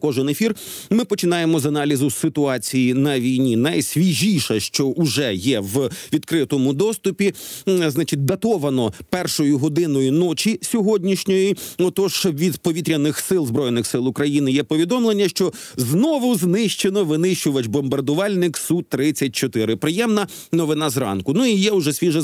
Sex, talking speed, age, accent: male, 120 wpm, 40-59, native